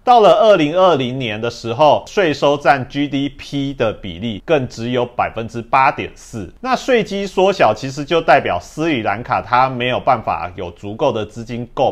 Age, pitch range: 30-49, 115-165 Hz